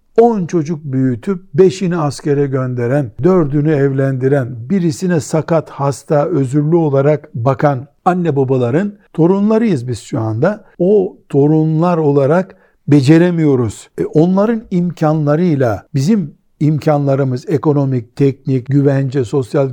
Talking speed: 100 wpm